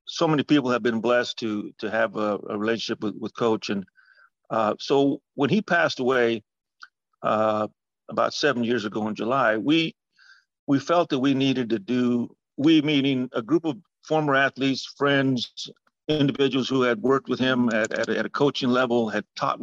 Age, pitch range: 50-69, 115-140 Hz